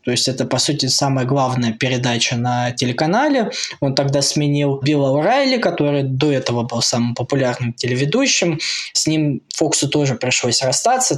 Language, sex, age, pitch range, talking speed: Russian, male, 20-39, 130-165 Hz, 150 wpm